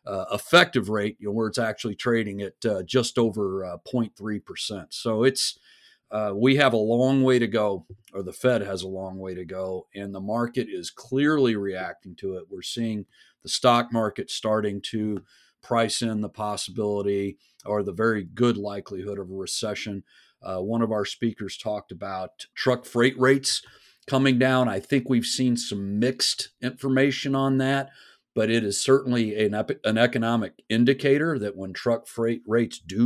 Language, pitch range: English, 100-125 Hz